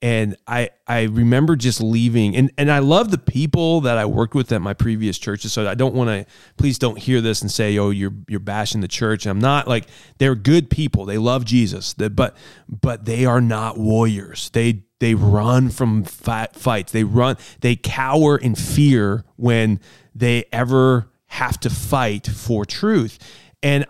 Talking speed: 185 wpm